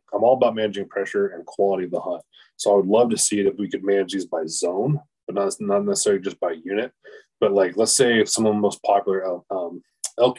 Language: English